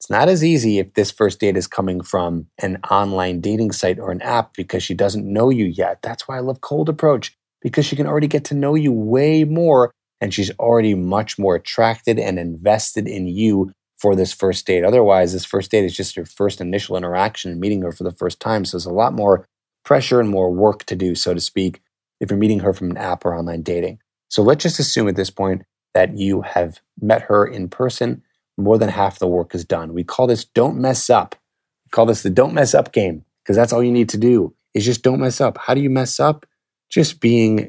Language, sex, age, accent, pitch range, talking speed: English, male, 20-39, American, 95-115 Hz, 235 wpm